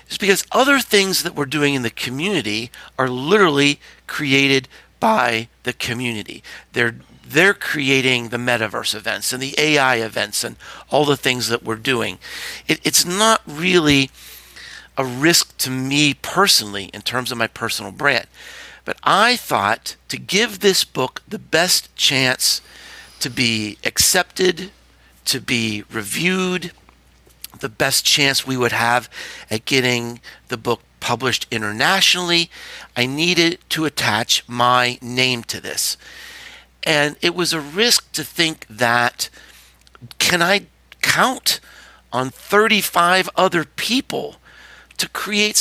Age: 50-69